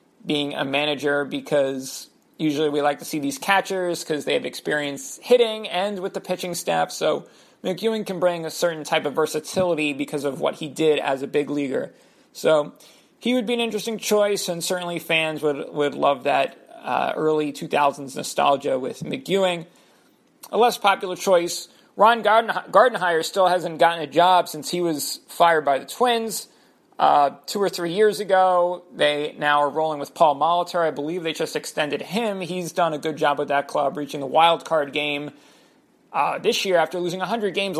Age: 40-59